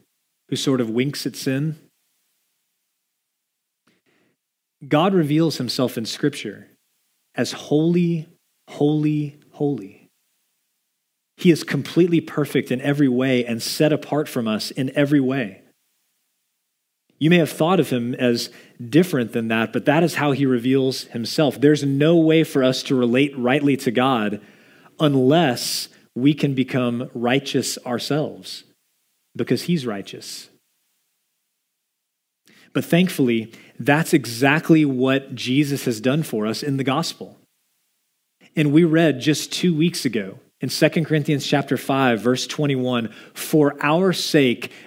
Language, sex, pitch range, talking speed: English, male, 125-160 Hz, 130 wpm